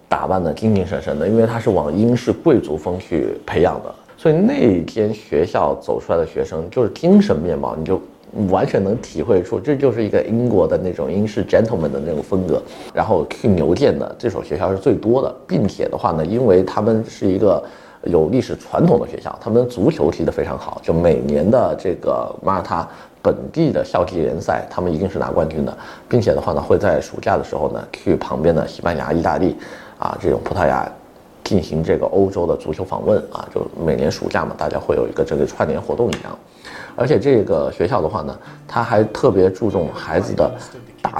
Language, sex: Chinese, male